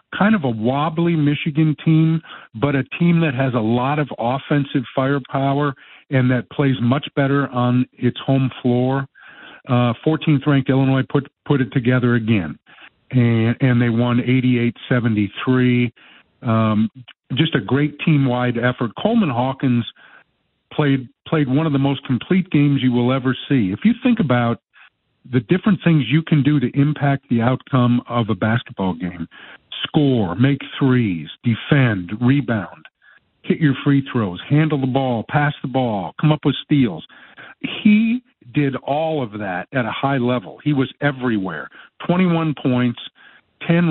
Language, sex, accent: English, male, American